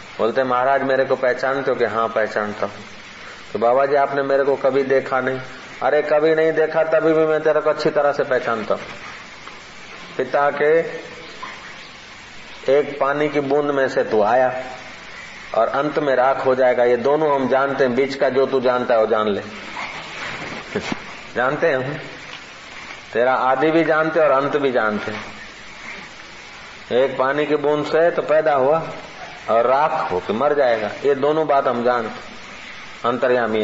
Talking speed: 160 wpm